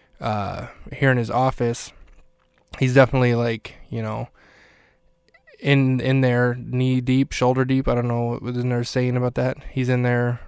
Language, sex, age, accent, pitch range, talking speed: English, male, 20-39, American, 120-135 Hz, 170 wpm